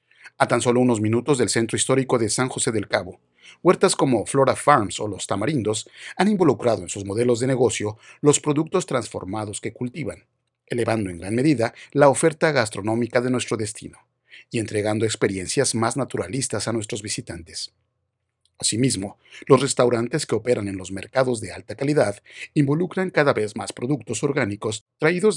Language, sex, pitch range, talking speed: Spanish, male, 105-135 Hz, 160 wpm